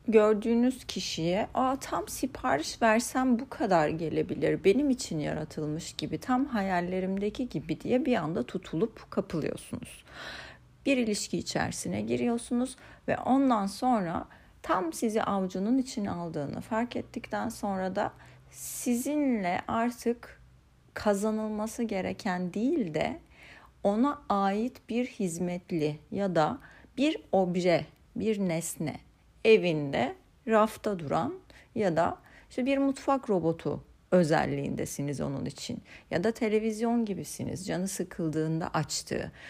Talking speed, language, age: 110 wpm, Turkish, 40-59